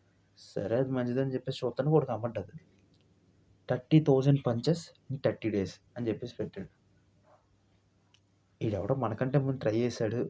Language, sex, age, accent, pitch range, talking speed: Telugu, male, 20-39, native, 100-135 Hz, 120 wpm